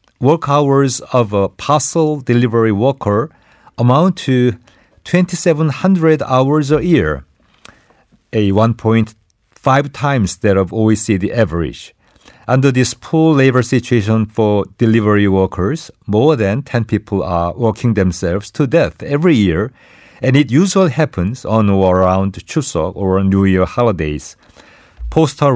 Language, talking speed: English, 120 wpm